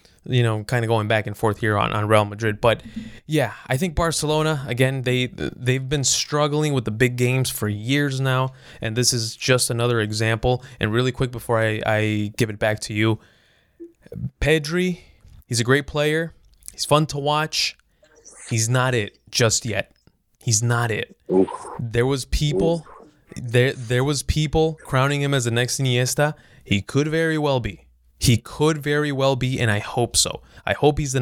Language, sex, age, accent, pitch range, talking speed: English, male, 20-39, American, 115-145 Hz, 185 wpm